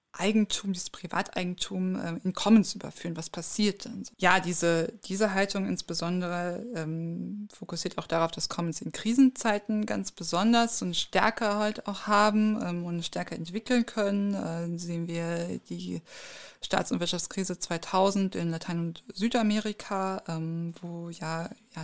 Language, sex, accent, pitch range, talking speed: German, female, German, 165-205 Hz, 135 wpm